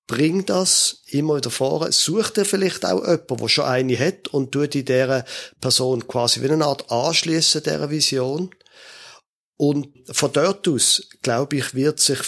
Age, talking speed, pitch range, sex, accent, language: 50-69, 160 wpm, 130-165 Hz, male, German, German